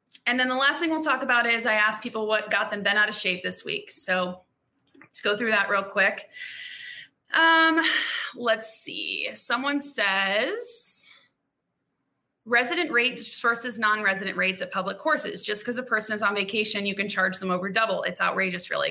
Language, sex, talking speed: English, female, 180 wpm